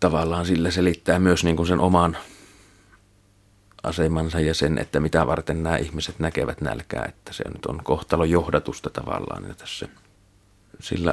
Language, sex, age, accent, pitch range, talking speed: Finnish, male, 30-49, native, 80-90 Hz, 145 wpm